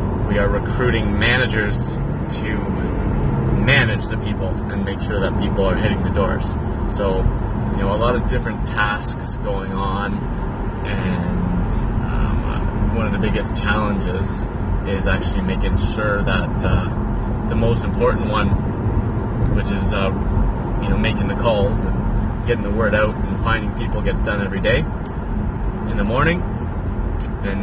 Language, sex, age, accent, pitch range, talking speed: English, male, 20-39, American, 100-115 Hz, 150 wpm